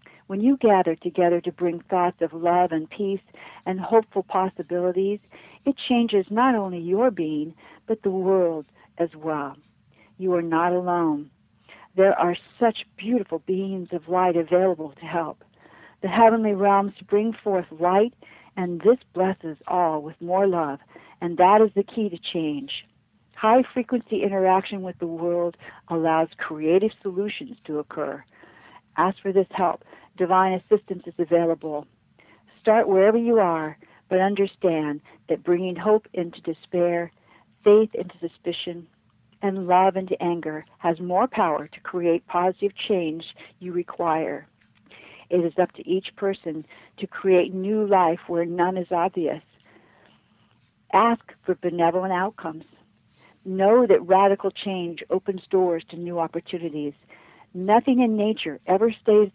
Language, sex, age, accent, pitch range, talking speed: English, female, 60-79, American, 170-200 Hz, 140 wpm